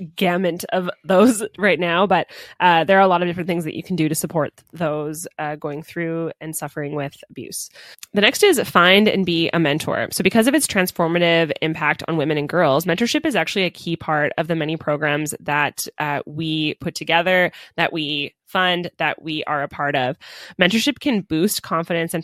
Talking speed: 200 wpm